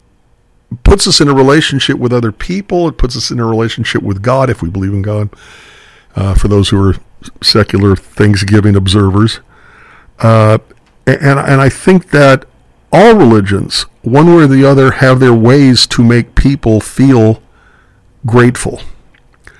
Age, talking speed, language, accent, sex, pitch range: 50-69, 155 wpm, English, American, male, 110-135 Hz